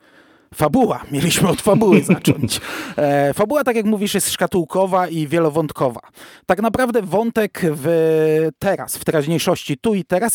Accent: native